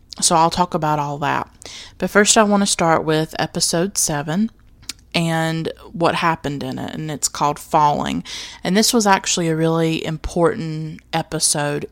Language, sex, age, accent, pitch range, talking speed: English, female, 20-39, American, 155-185 Hz, 160 wpm